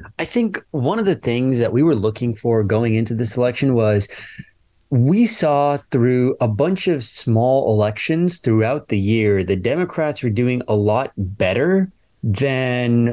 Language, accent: English, American